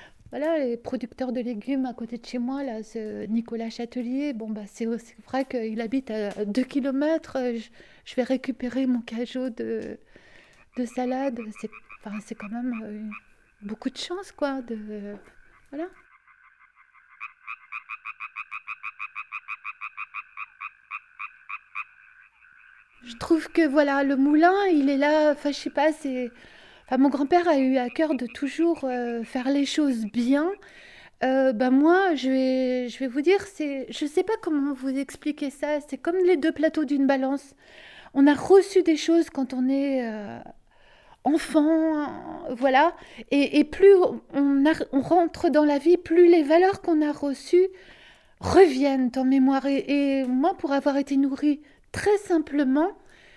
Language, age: French, 30-49